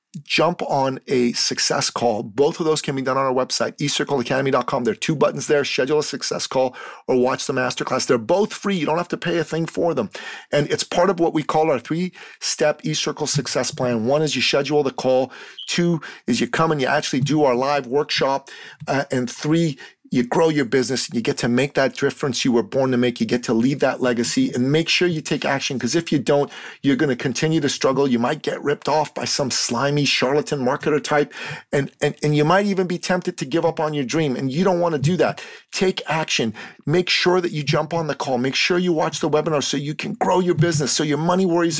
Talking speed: 245 wpm